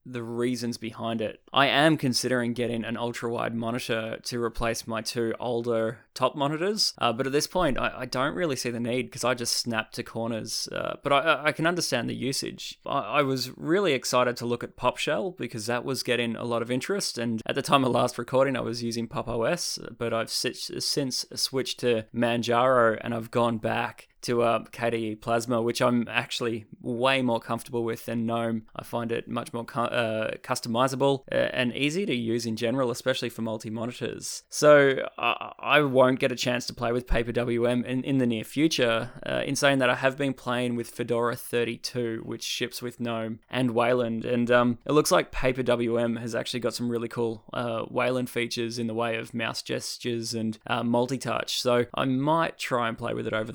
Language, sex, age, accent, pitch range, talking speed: English, male, 20-39, Australian, 115-125 Hz, 205 wpm